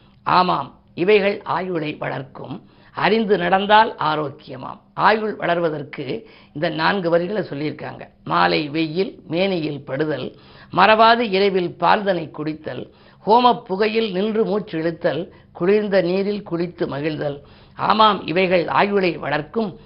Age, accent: 50-69, native